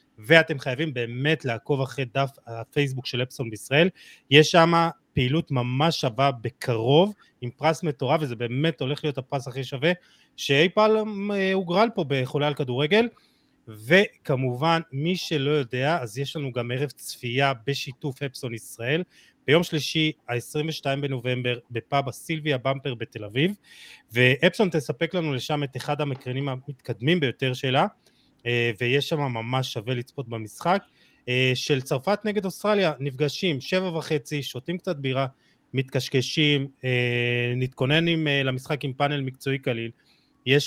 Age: 30-49